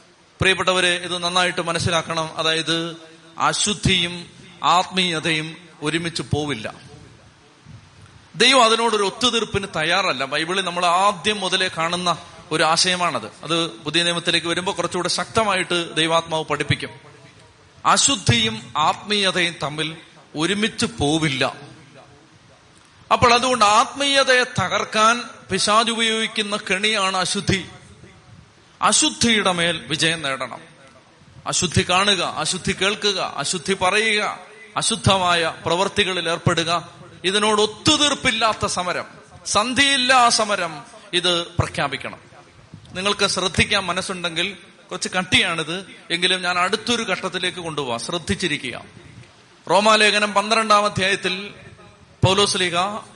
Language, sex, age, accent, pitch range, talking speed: Malayalam, male, 30-49, native, 160-205 Hz, 85 wpm